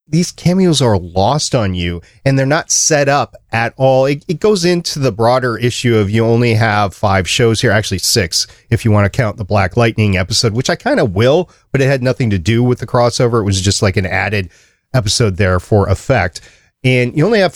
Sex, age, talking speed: male, 40-59, 225 wpm